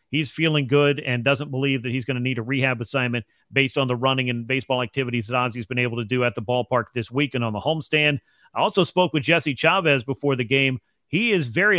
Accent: American